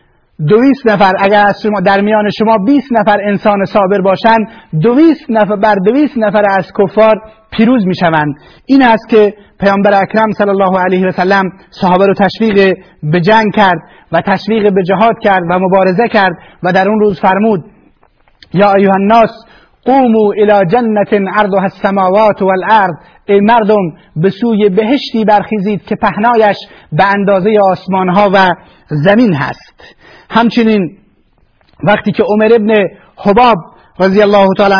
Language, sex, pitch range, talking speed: Persian, male, 195-230 Hz, 140 wpm